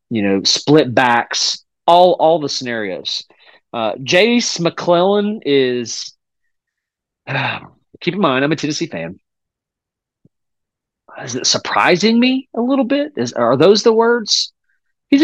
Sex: male